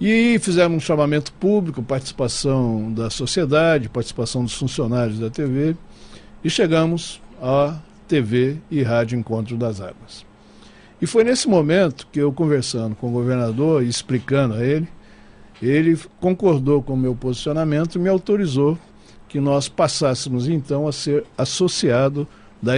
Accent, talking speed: Brazilian, 140 wpm